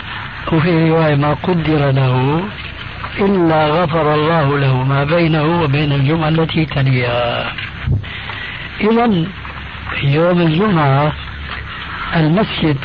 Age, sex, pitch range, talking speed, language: 60-79, male, 135-170 Hz, 90 wpm, Arabic